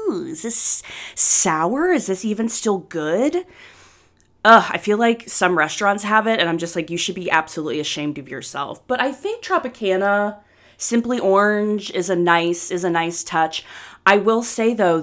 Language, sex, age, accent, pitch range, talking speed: English, female, 20-39, American, 175-235 Hz, 180 wpm